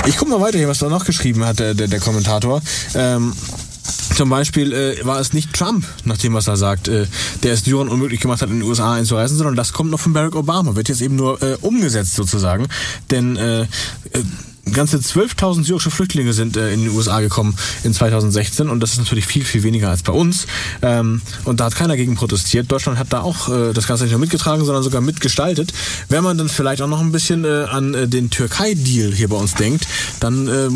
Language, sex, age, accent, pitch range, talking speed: German, male, 20-39, German, 110-140 Hz, 220 wpm